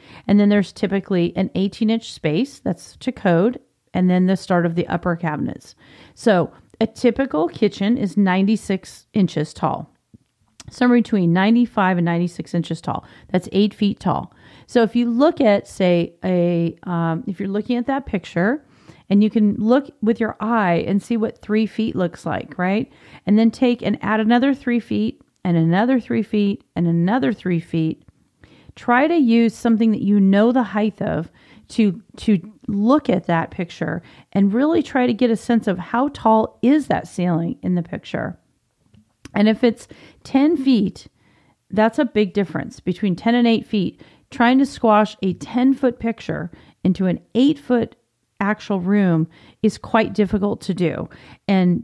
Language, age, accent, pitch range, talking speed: English, 40-59, American, 180-230 Hz, 175 wpm